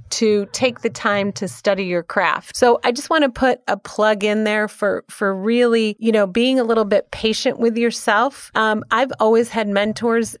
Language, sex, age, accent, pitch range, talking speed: English, female, 30-49, American, 205-245 Hz, 200 wpm